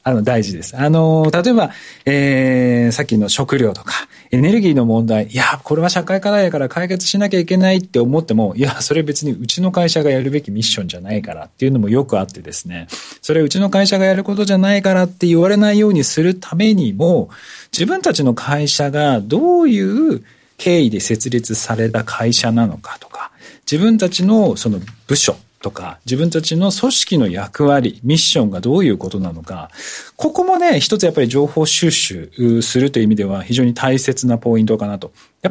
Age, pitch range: 40-59, 115-195 Hz